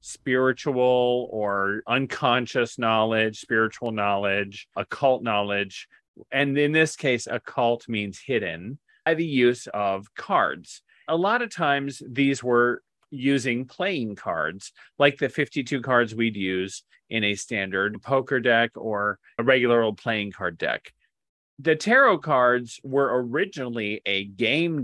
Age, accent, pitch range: 30-49, American, 110-140 Hz